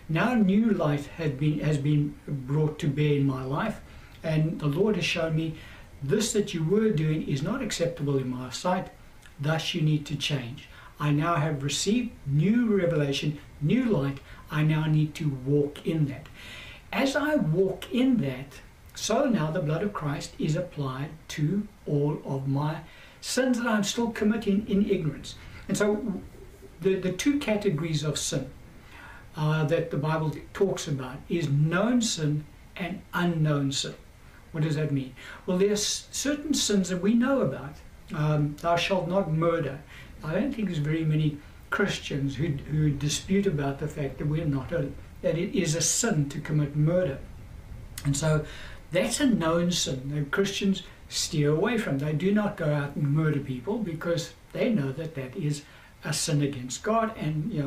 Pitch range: 145-190 Hz